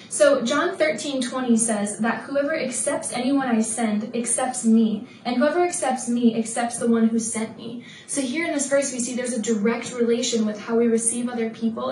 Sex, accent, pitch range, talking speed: female, American, 225-255 Hz, 200 wpm